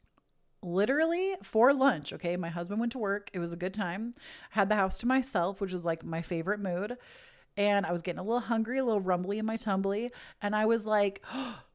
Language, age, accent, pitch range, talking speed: English, 30-49, American, 180-220 Hz, 215 wpm